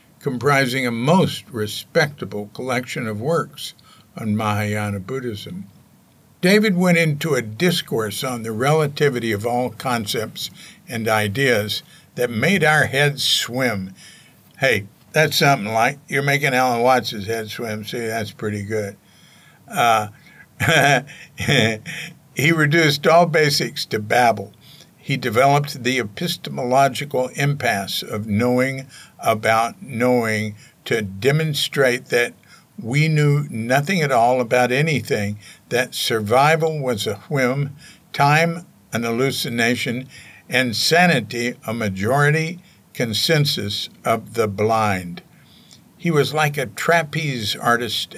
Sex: male